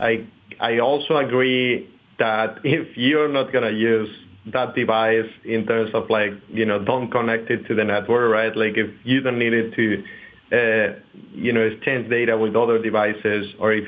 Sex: male